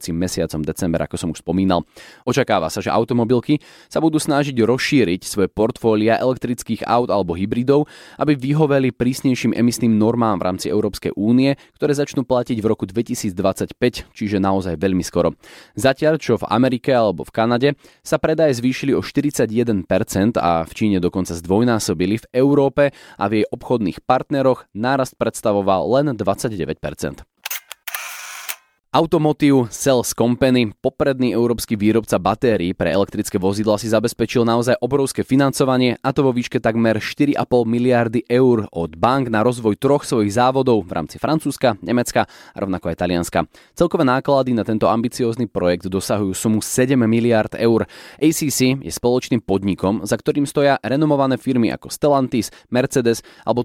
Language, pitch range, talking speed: Slovak, 100-130 Hz, 145 wpm